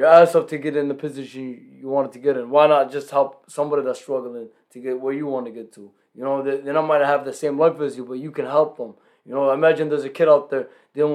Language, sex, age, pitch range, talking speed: English, male, 20-39, 130-150 Hz, 280 wpm